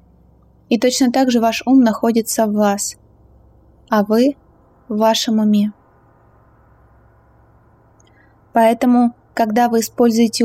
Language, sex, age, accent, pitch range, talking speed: Russian, female, 20-39, native, 200-240 Hz, 105 wpm